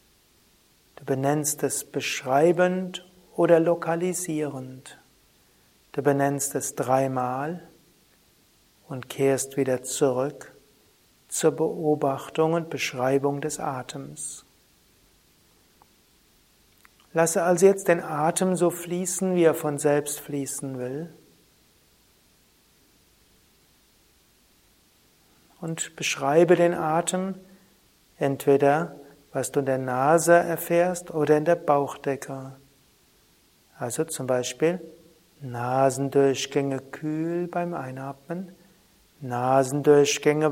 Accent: German